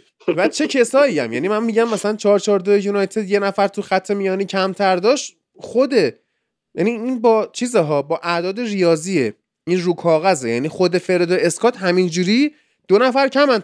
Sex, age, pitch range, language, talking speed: male, 30-49, 180-240 Hz, Persian, 165 wpm